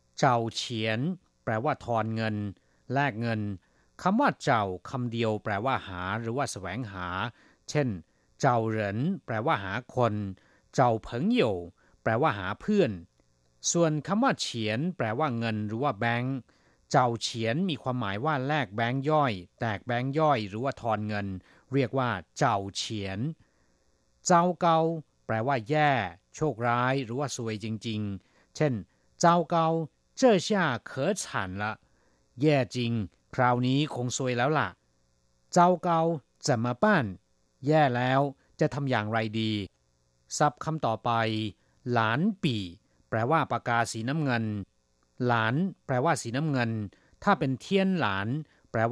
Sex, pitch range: male, 105-145 Hz